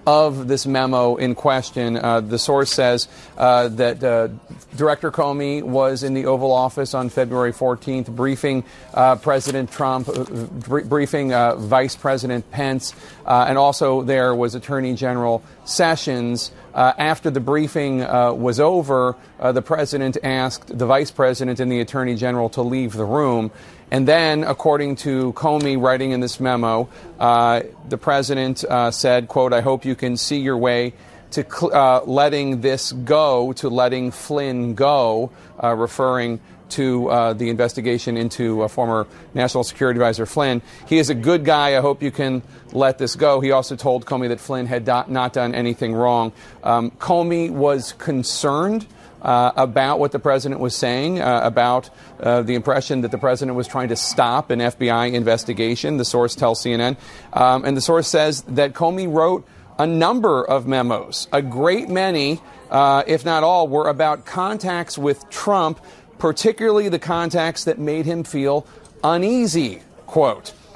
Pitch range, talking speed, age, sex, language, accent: 120-145 Hz, 165 wpm, 40-59, male, English, American